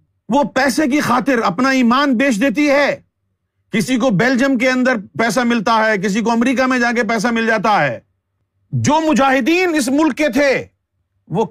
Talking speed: 175 wpm